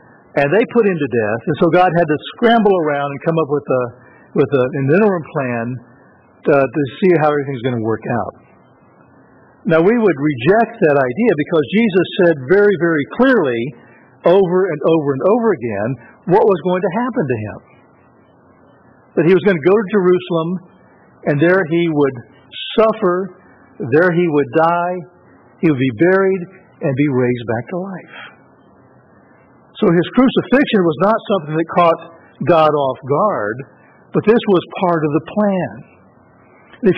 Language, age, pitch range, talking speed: English, 60-79, 145-190 Hz, 165 wpm